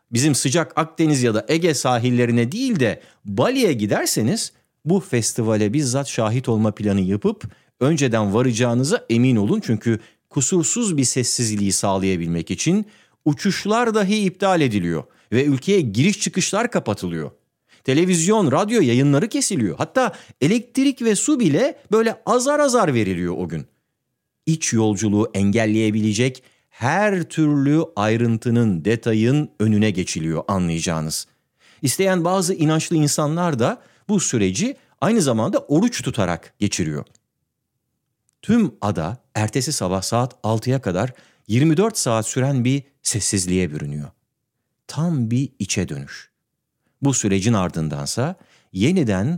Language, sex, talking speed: Turkish, male, 115 wpm